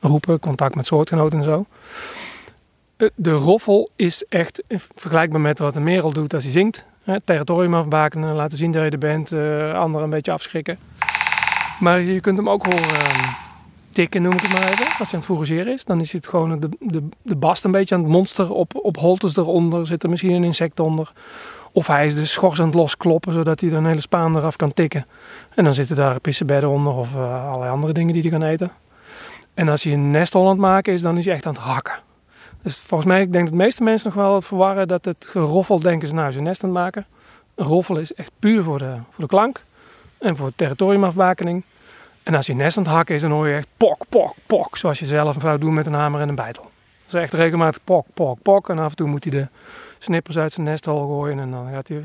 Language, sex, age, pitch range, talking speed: Dutch, male, 40-59, 150-185 Hz, 245 wpm